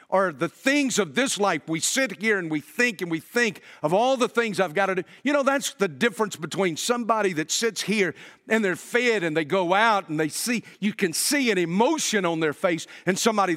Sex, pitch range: male, 140-210 Hz